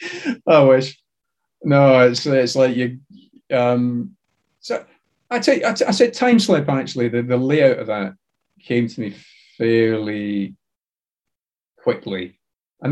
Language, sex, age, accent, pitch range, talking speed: English, male, 40-59, British, 105-130 Hz, 140 wpm